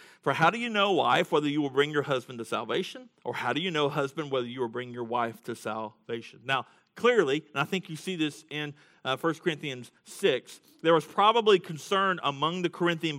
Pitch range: 130-165 Hz